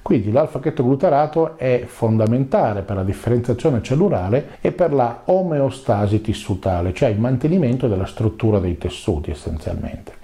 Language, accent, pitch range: Italian, native, 105-150 Hz